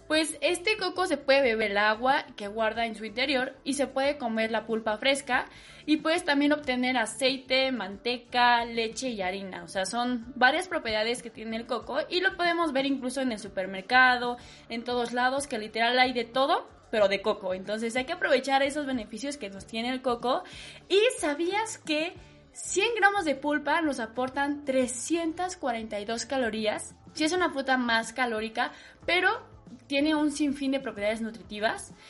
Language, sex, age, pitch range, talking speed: Spanish, female, 20-39, 225-285 Hz, 170 wpm